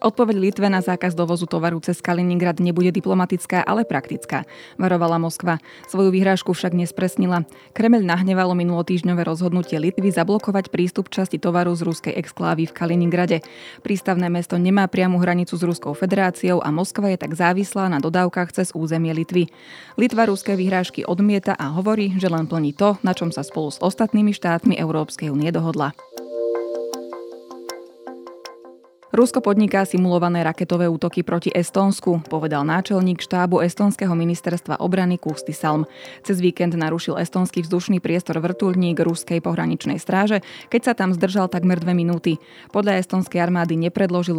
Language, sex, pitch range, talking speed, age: Slovak, female, 165-190 Hz, 140 wpm, 20-39